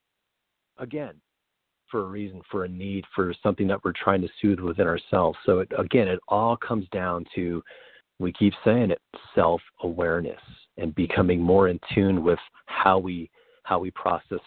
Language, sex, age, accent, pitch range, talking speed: English, male, 40-59, American, 90-100 Hz, 165 wpm